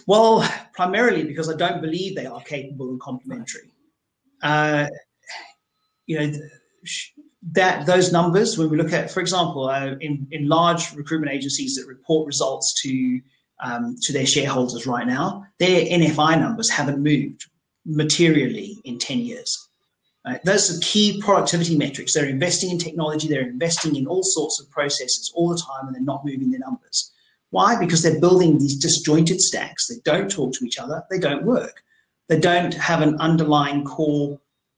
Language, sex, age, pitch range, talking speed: English, male, 30-49, 140-175 Hz, 165 wpm